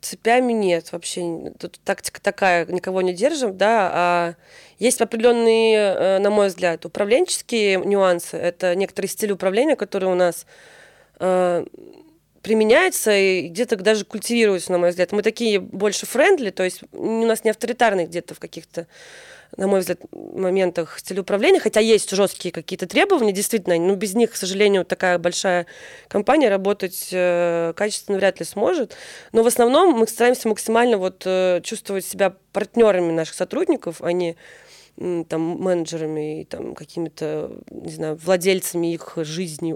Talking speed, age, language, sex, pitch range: 150 wpm, 20-39, Russian, female, 175-220 Hz